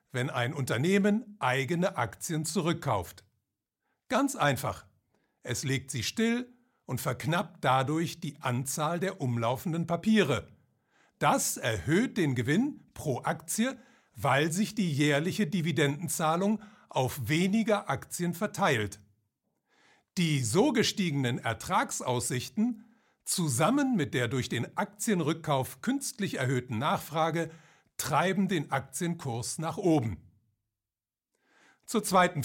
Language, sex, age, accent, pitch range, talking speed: German, male, 60-79, German, 125-195 Hz, 100 wpm